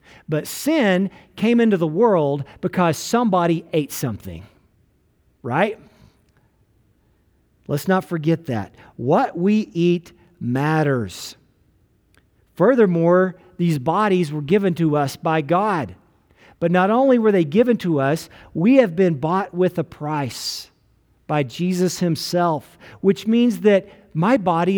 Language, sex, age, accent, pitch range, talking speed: English, male, 50-69, American, 135-195 Hz, 125 wpm